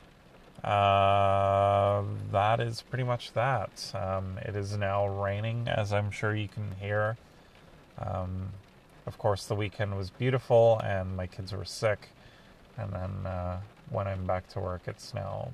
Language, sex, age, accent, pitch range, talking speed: English, male, 30-49, American, 95-115 Hz, 150 wpm